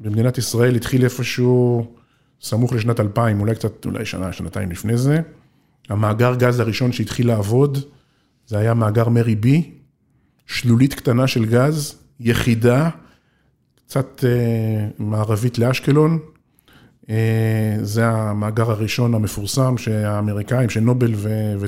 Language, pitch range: Hebrew, 110-135 Hz